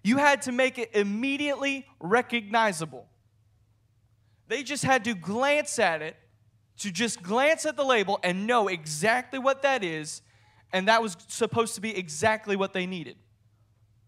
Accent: American